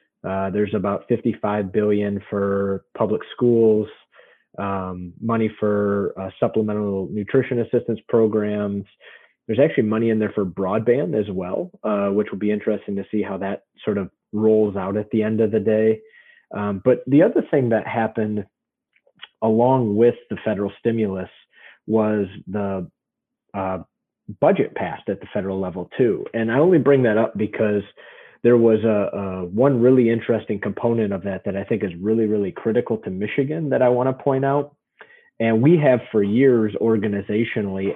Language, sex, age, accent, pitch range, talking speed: English, male, 30-49, American, 100-115 Hz, 165 wpm